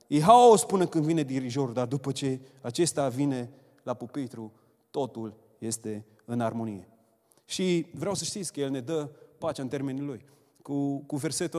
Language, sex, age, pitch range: Romanian, male, 30-49, 125-160 Hz